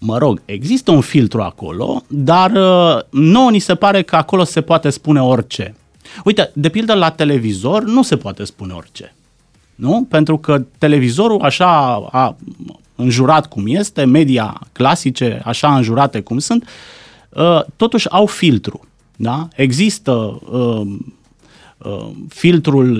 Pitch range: 120-170 Hz